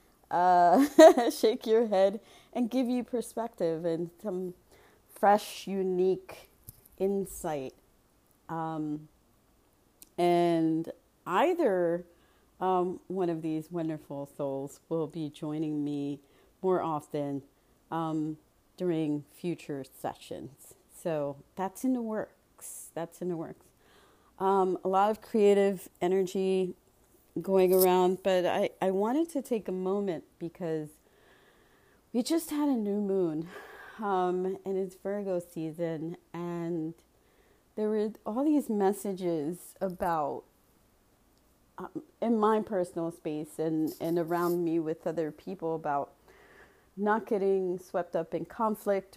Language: English